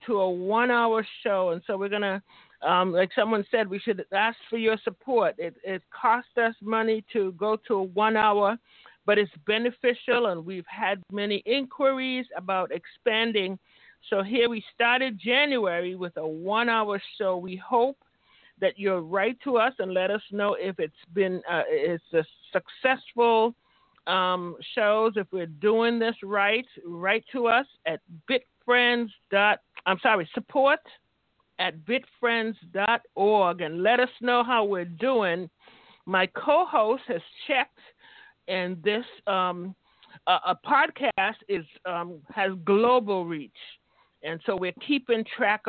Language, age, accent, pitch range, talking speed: English, 50-69, American, 185-240 Hz, 150 wpm